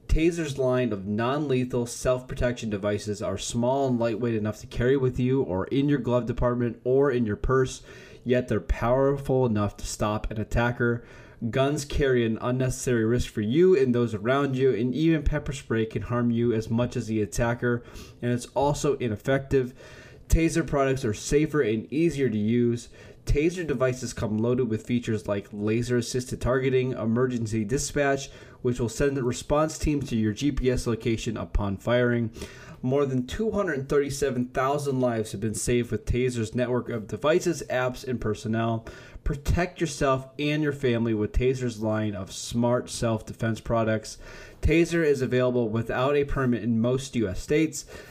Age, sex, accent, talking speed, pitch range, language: 20-39, male, American, 160 wpm, 115-135 Hz, English